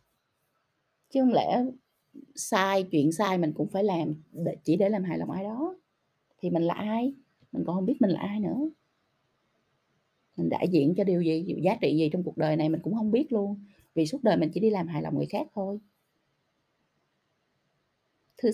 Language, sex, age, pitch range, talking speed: Vietnamese, female, 20-39, 160-215 Hz, 195 wpm